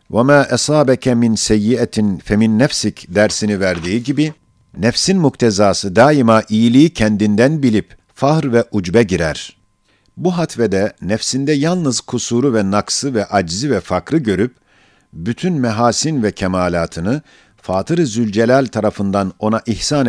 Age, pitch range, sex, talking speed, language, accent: 50-69, 100-130 Hz, male, 120 wpm, Turkish, native